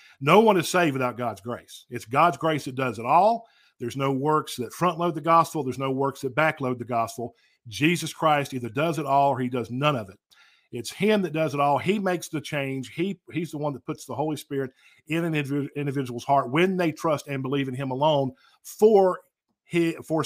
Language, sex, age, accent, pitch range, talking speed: English, male, 50-69, American, 135-170 Hz, 220 wpm